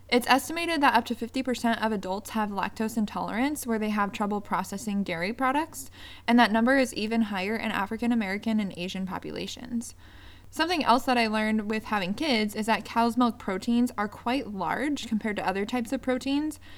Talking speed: 180 wpm